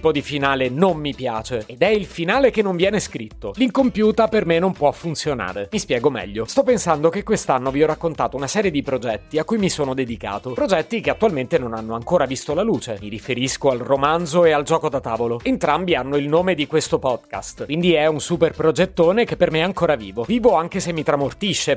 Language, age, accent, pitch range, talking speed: Italian, 30-49, native, 130-190 Hz, 220 wpm